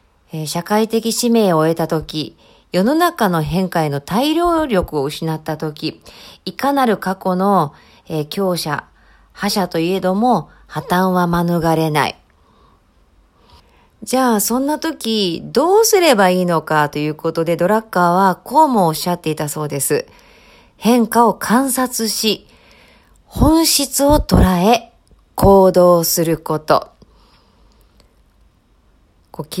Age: 40-59